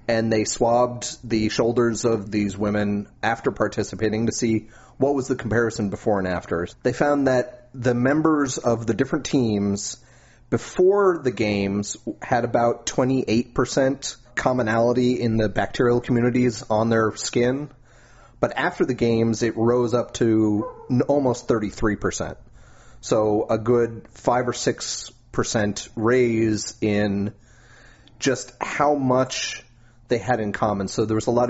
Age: 30-49